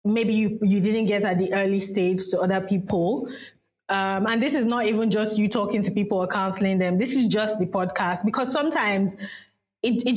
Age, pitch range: 20-39, 190-230 Hz